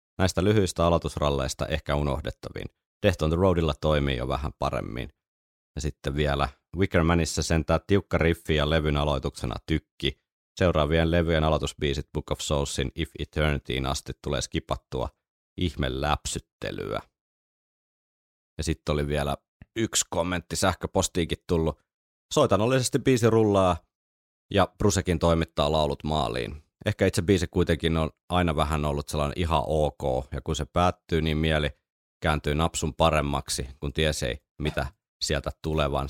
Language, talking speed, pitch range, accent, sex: Finnish, 130 wpm, 70-85 Hz, native, male